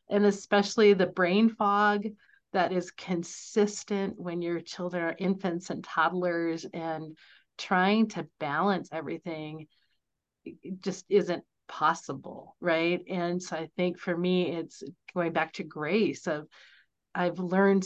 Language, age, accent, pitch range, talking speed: English, 40-59, American, 165-195 Hz, 130 wpm